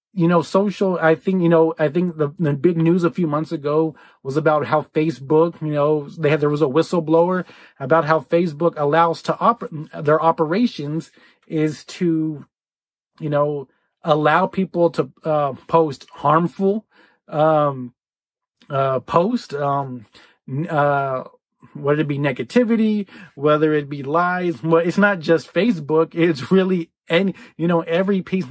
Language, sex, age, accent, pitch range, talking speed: English, male, 30-49, American, 150-175 Hz, 155 wpm